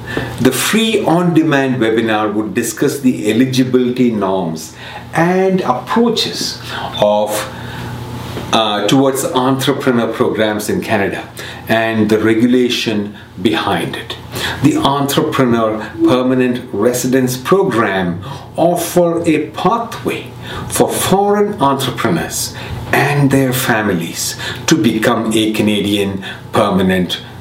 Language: English